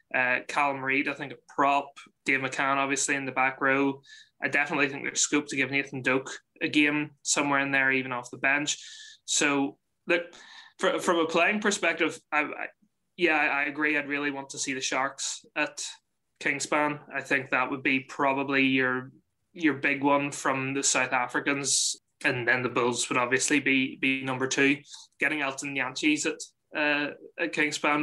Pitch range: 135-150 Hz